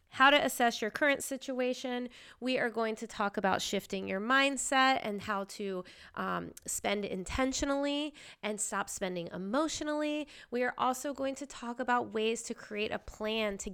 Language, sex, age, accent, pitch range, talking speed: English, female, 20-39, American, 195-260 Hz, 165 wpm